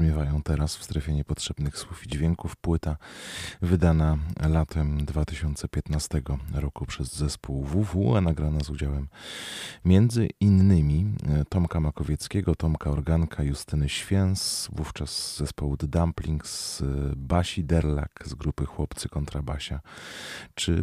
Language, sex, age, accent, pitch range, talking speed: Polish, male, 30-49, native, 75-90 Hz, 110 wpm